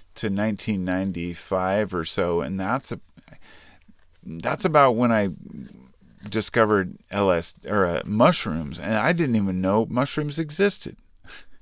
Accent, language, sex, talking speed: American, English, male, 120 wpm